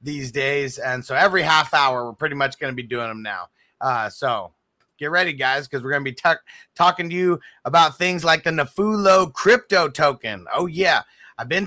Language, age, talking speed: English, 30-49, 205 wpm